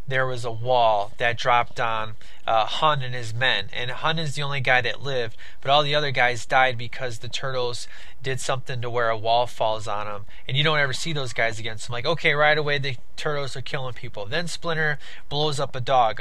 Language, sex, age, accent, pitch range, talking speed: English, male, 20-39, American, 130-165 Hz, 235 wpm